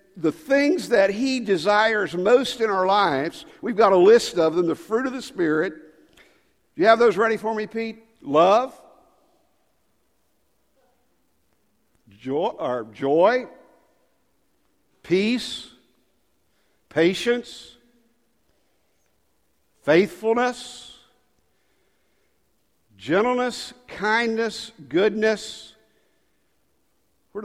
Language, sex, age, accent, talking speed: English, male, 60-79, American, 85 wpm